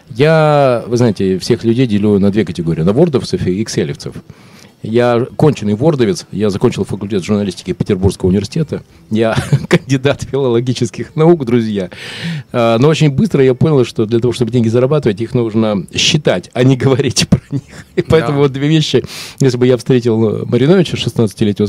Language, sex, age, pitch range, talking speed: Russian, male, 40-59, 110-145 Hz, 160 wpm